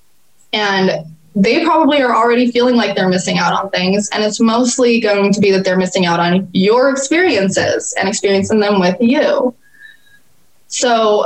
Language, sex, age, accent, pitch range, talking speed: English, female, 20-39, American, 180-210 Hz, 165 wpm